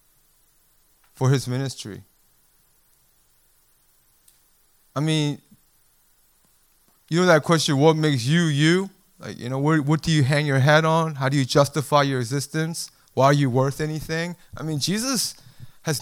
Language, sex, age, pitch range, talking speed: English, male, 30-49, 120-165 Hz, 140 wpm